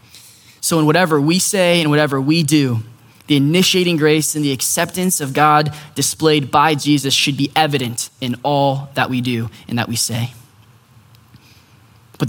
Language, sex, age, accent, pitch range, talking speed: English, male, 10-29, American, 130-165 Hz, 160 wpm